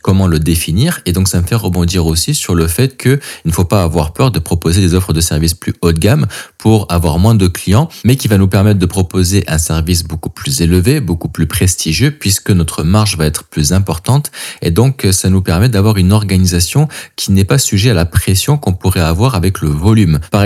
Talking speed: 230 wpm